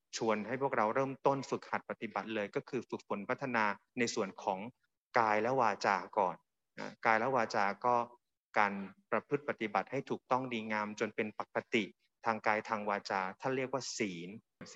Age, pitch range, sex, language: 20-39, 105-125 Hz, male, Thai